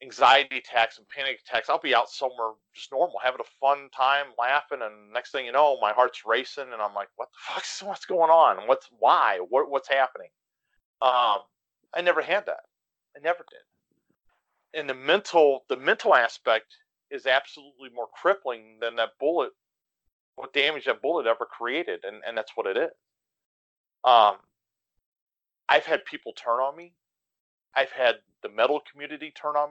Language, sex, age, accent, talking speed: English, male, 40-59, American, 170 wpm